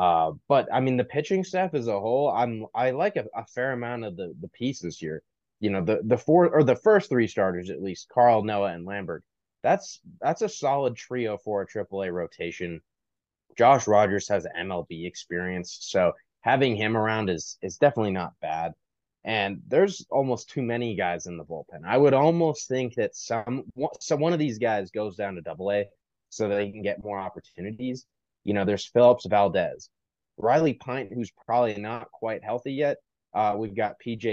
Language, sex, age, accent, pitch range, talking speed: English, male, 20-39, American, 100-125 Hz, 195 wpm